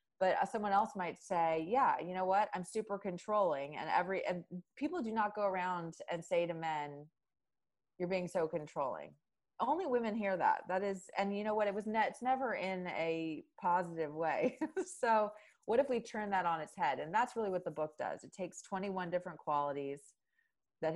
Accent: American